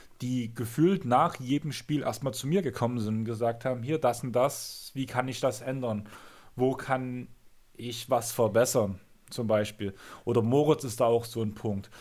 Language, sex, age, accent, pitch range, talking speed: German, male, 30-49, German, 120-150 Hz, 185 wpm